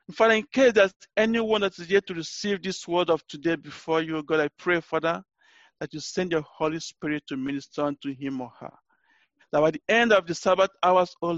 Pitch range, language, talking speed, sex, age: 150-200 Hz, English, 225 wpm, male, 50-69